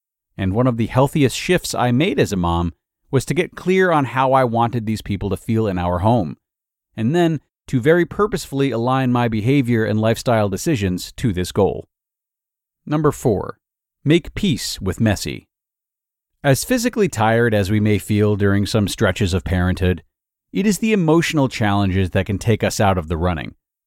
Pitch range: 100-140 Hz